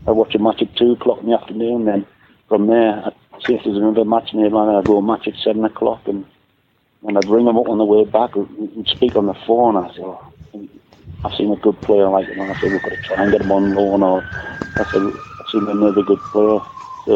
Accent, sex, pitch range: British, male, 105-115 Hz